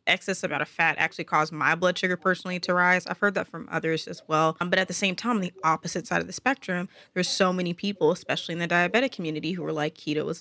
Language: English